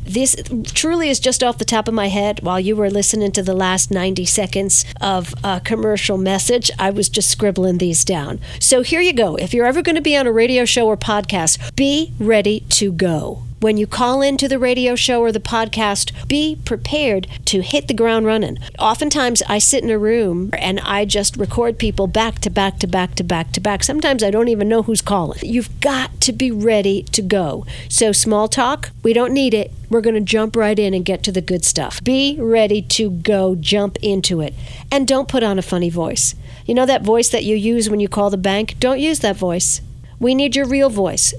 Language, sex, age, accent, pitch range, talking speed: English, female, 50-69, American, 190-240 Hz, 225 wpm